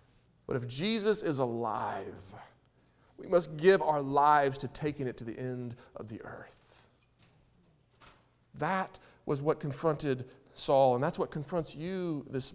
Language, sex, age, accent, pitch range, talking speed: English, male, 40-59, American, 135-175 Hz, 145 wpm